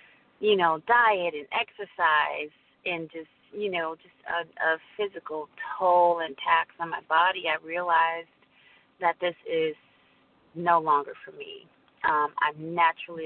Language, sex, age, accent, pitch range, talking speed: English, female, 30-49, American, 165-210 Hz, 140 wpm